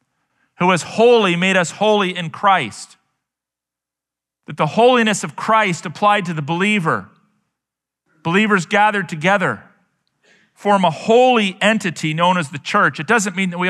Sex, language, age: male, English, 40-59